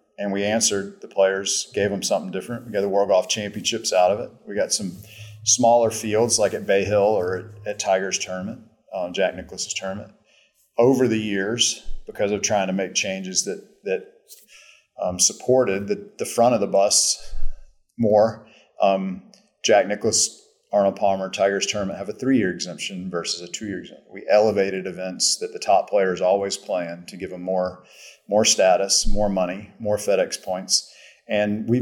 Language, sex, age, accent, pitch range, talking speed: English, male, 40-59, American, 100-120 Hz, 175 wpm